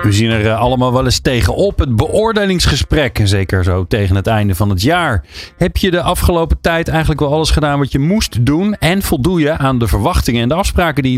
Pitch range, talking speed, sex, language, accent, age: 100-155 Hz, 220 wpm, male, Dutch, Dutch, 40-59